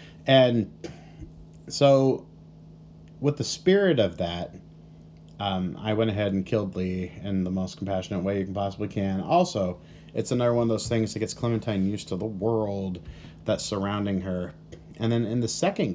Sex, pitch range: male, 90-120 Hz